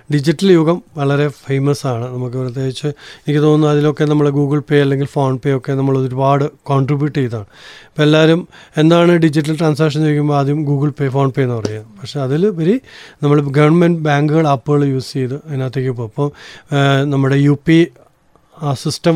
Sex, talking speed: male, 155 wpm